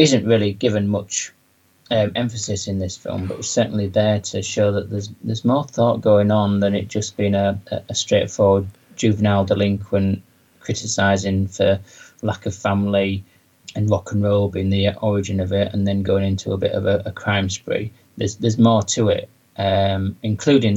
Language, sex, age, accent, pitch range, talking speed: English, male, 30-49, British, 100-110 Hz, 180 wpm